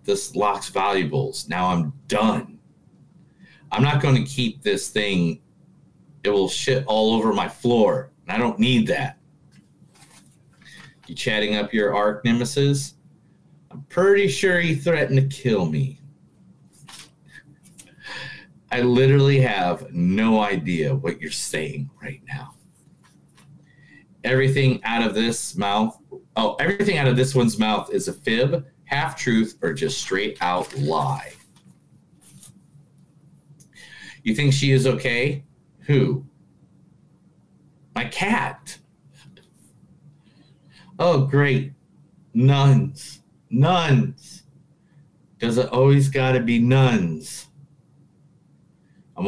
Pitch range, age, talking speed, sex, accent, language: 120-155 Hz, 40-59, 110 wpm, male, American, English